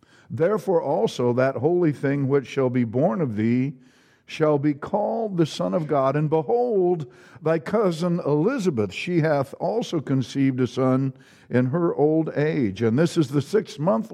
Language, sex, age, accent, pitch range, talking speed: English, male, 60-79, American, 110-150 Hz, 165 wpm